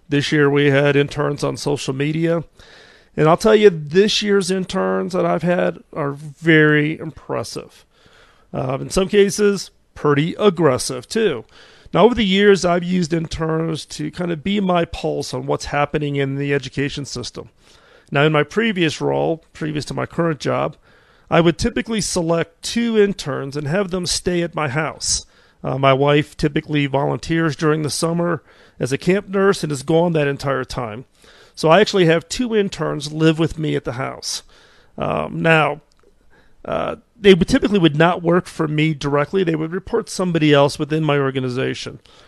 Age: 40-59